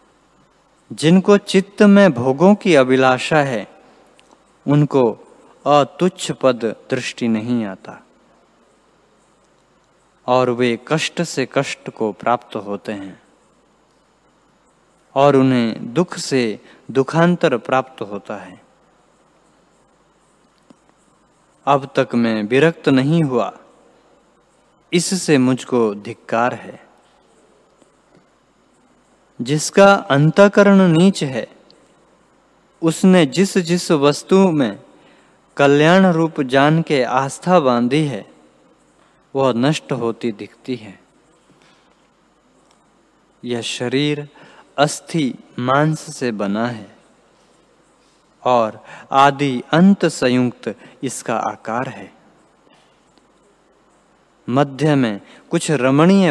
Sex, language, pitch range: male, Hindi, 120-165 Hz